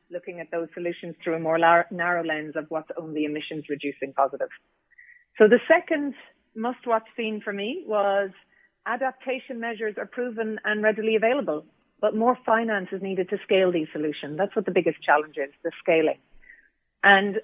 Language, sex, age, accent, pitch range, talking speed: English, female, 40-59, Irish, 165-215 Hz, 170 wpm